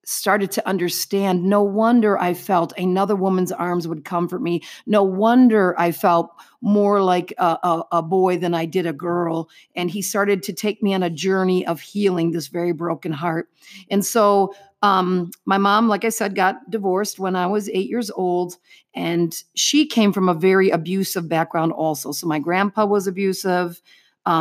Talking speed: 180 wpm